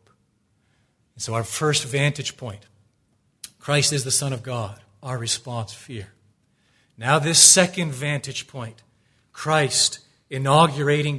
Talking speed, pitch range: 115 wpm, 110-140 Hz